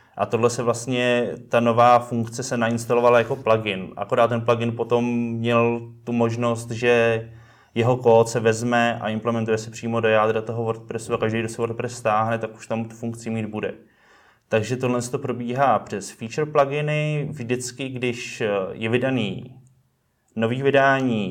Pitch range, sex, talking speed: 115-120 Hz, male, 165 wpm